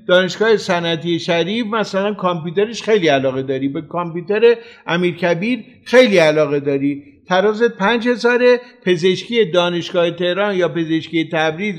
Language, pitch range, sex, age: Persian, 165-225 Hz, male, 50-69